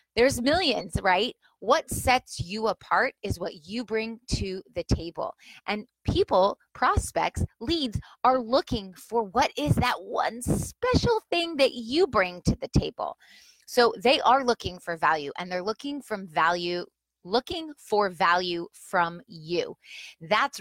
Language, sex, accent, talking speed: English, female, American, 145 wpm